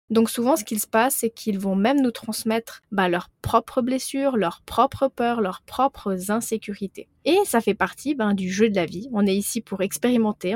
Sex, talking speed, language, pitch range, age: female, 210 wpm, French, 205-260 Hz, 20-39